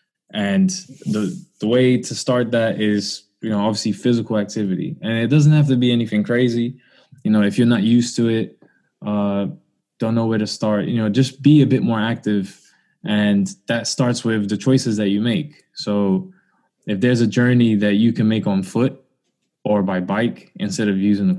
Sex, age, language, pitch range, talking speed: male, 20-39, English, 105-130 Hz, 195 wpm